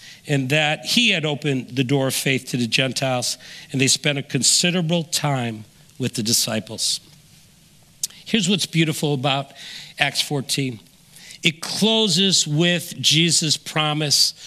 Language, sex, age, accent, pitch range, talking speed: English, male, 50-69, American, 150-195 Hz, 135 wpm